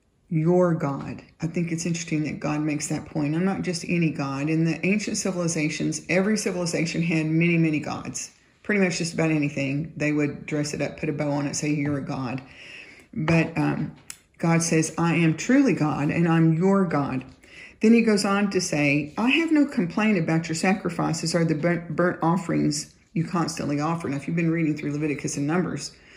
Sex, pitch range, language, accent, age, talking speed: female, 150-180 Hz, English, American, 40-59, 195 wpm